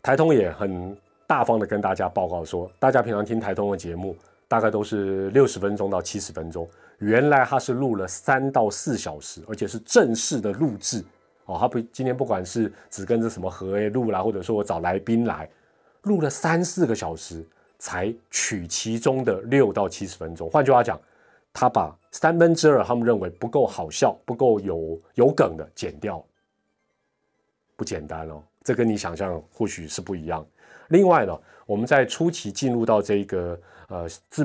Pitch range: 90-130 Hz